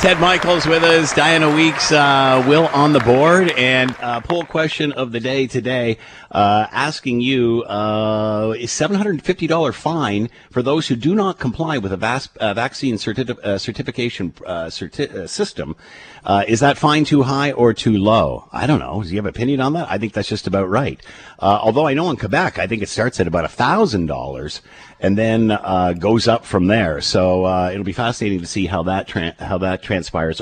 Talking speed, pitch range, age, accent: 205 wpm, 100-140 Hz, 50-69, American